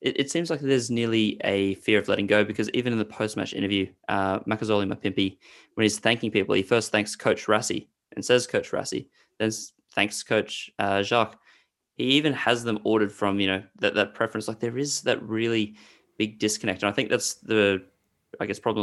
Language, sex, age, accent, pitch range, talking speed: English, male, 20-39, Australian, 100-120 Hz, 200 wpm